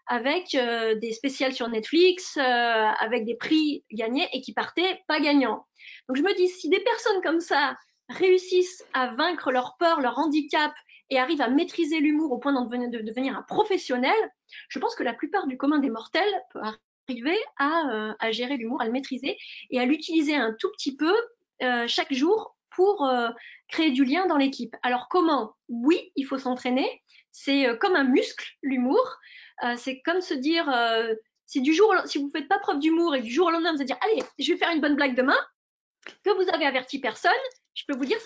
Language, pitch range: French, 245-345 Hz